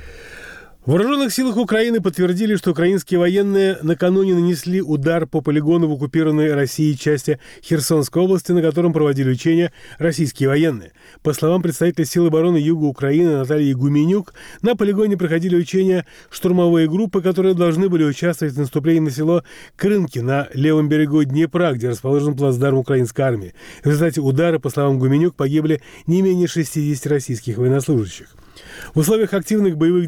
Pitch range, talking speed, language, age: 140-175 Hz, 145 wpm, Russian, 30-49